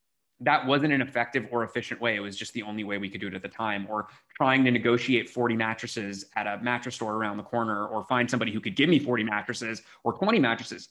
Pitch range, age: 105-125 Hz, 20-39